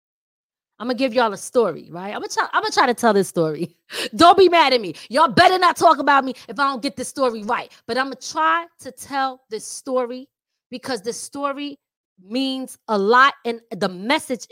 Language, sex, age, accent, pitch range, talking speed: English, female, 20-39, American, 195-265 Hz, 220 wpm